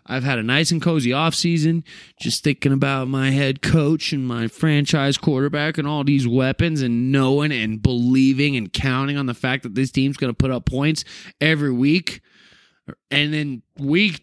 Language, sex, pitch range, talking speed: English, male, 125-175 Hz, 180 wpm